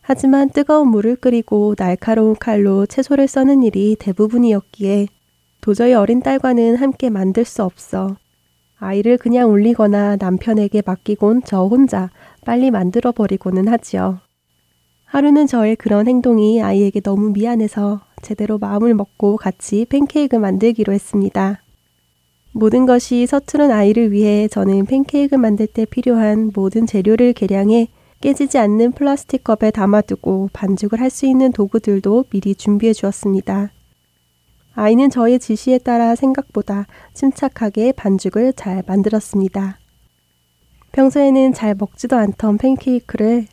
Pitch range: 200-245 Hz